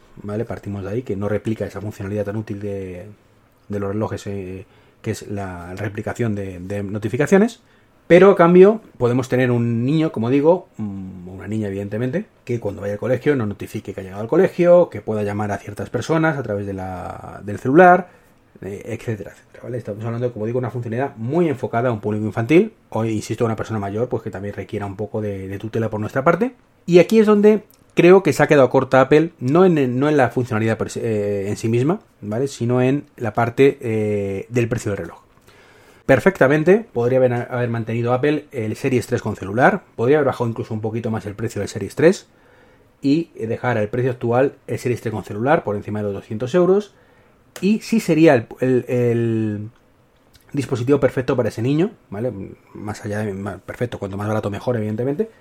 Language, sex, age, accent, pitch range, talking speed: Spanish, male, 30-49, Spanish, 105-135 Hz, 195 wpm